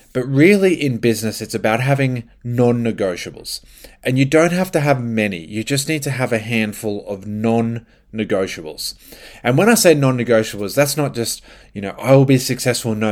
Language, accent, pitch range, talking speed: English, Australian, 110-130 Hz, 180 wpm